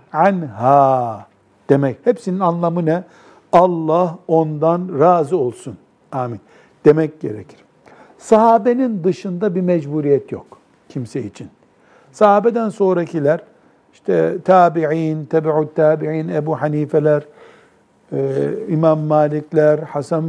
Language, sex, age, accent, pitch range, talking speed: Turkish, male, 60-79, native, 135-180 Hz, 90 wpm